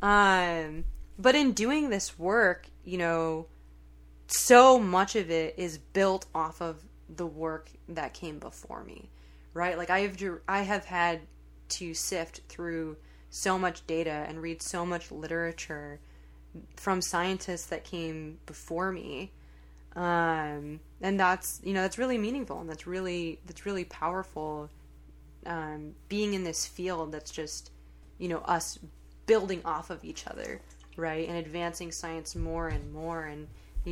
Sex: female